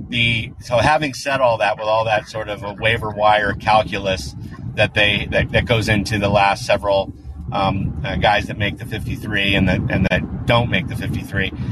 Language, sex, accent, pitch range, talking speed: English, male, American, 100-115 Hz, 210 wpm